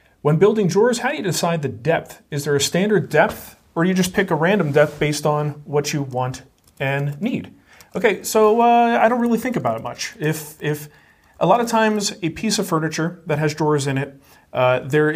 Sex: male